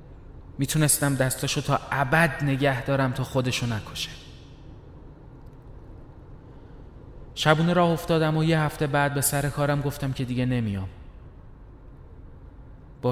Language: Persian